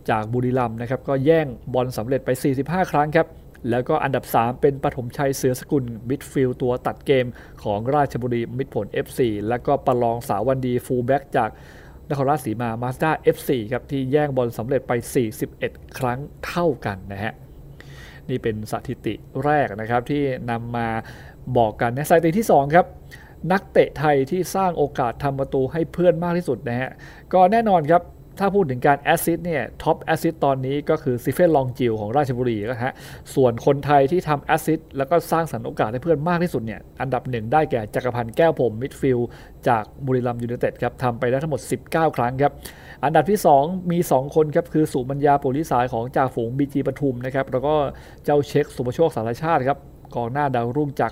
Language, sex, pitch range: Thai, male, 120-155 Hz